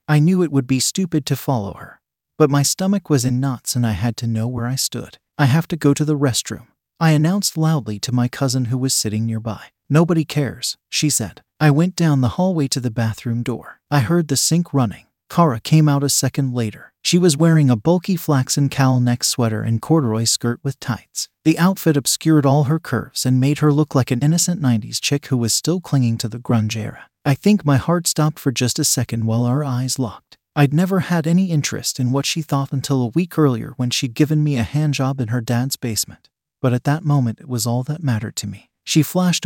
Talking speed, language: 230 wpm, English